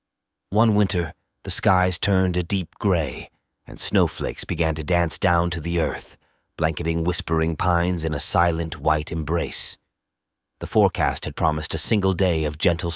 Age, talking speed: 30-49, 155 wpm